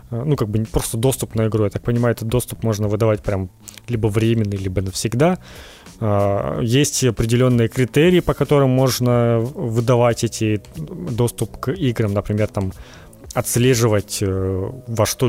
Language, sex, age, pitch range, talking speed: Ukrainian, male, 20-39, 105-125 Hz, 140 wpm